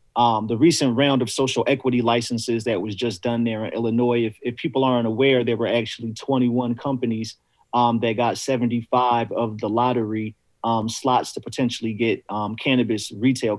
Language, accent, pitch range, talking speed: English, American, 115-130 Hz, 175 wpm